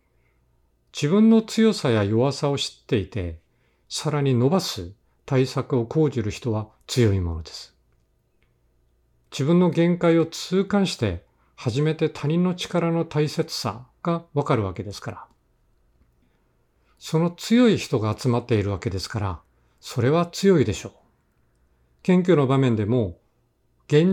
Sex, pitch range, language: male, 105-155 Hz, Japanese